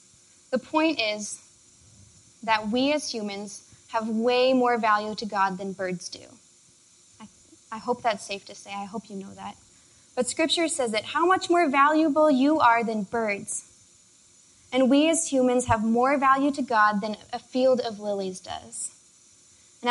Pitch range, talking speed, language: 205-250 Hz, 170 wpm, English